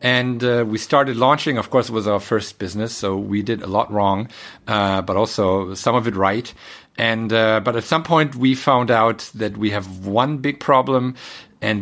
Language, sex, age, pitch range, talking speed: English, male, 50-69, 105-130 Hz, 210 wpm